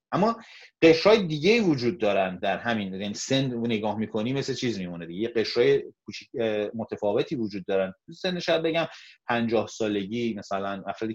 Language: Persian